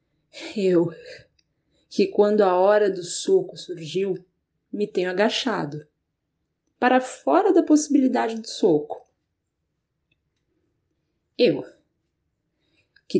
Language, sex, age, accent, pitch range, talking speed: Portuguese, female, 20-39, Brazilian, 180-275 Hz, 85 wpm